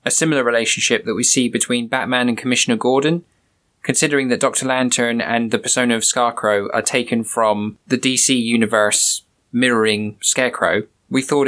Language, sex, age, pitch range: English, male, 20-39, 115-130 Hz